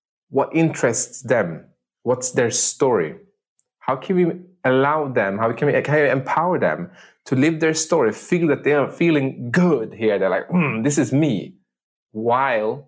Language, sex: English, male